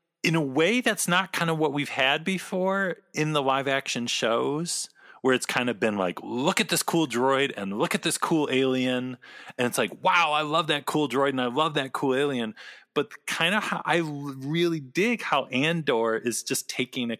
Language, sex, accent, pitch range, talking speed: English, male, American, 130-180 Hz, 215 wpm